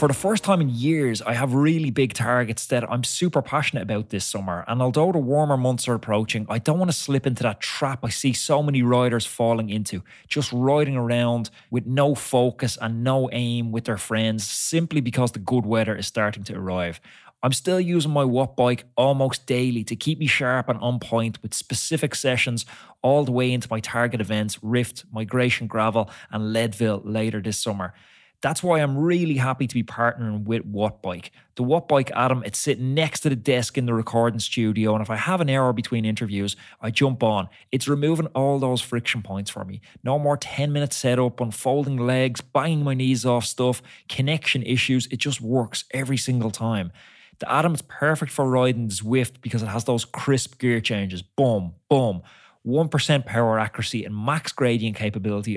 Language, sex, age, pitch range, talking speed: English, male, 20-39, 110-135 Hz, 195 wpm